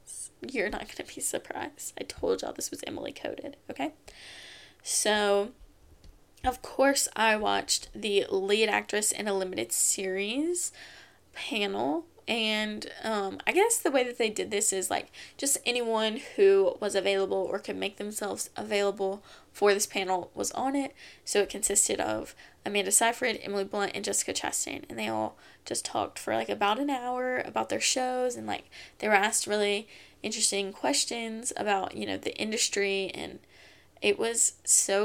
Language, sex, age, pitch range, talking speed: English, female, 10-29, 195-240 Hz, 165 wpm